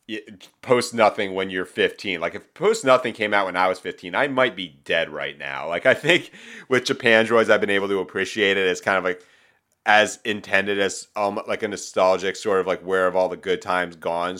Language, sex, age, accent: English, male, 30-49, American